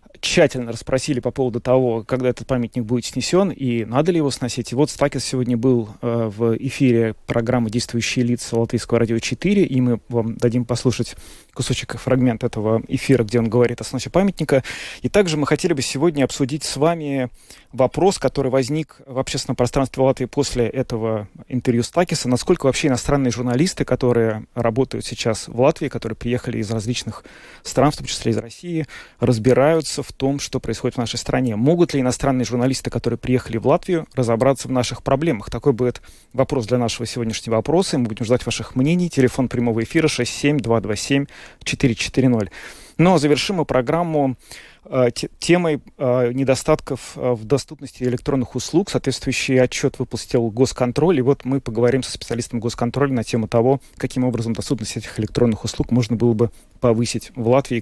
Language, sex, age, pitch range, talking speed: Russian, male, 20-39, 120-135 Hz, 165 wpm